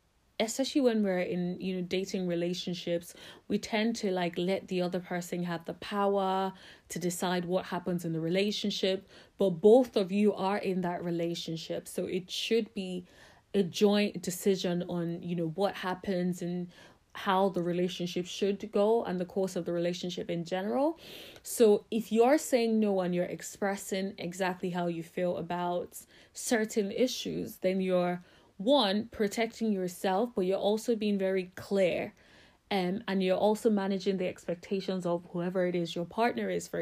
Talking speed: 165 wpm